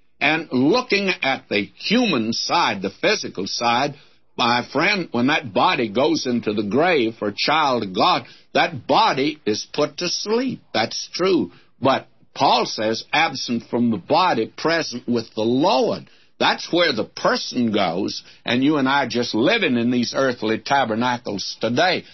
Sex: male